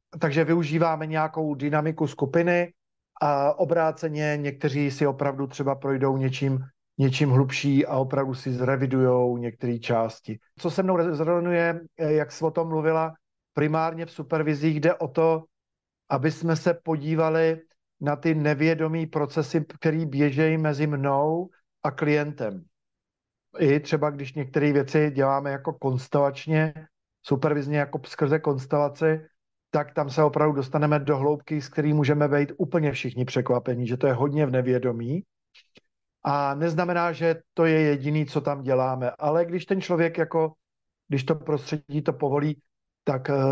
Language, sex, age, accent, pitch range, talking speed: Czech, male, 50-69, native, 140-160 Hz, 140 wpm